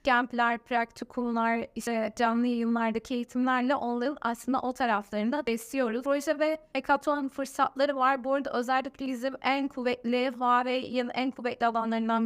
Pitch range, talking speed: 235-270 Hz, 125 wpm